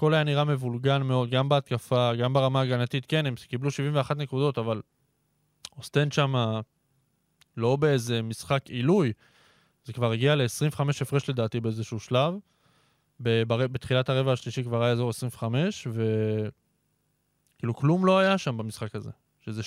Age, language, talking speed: 20-39, Hebrew, 135 wpm